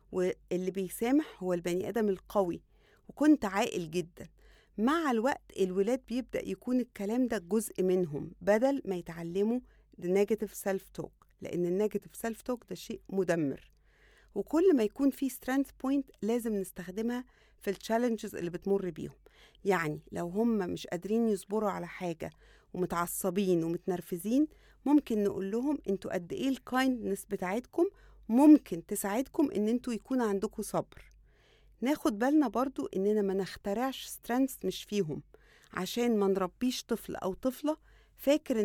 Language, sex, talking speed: English, female, 135 wpm